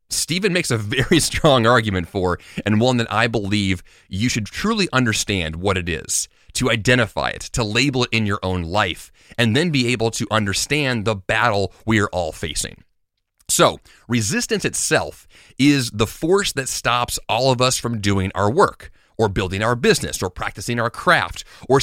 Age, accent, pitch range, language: 30-49, American, 100-130 Hz, English